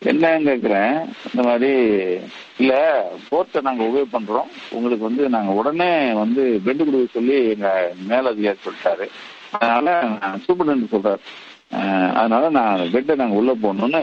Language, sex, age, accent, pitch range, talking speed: Tamil, male, 50-69, native, 125-200 Hz, 90 wpm